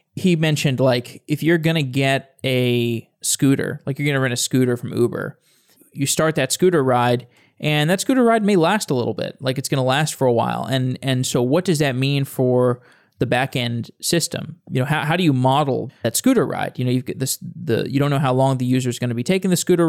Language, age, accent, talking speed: English, 20-39, American, 245 wpm